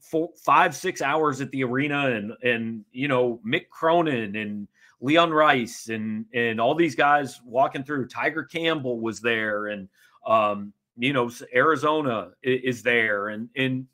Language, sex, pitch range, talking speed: English, male, 120-155 Hz, 155 wpm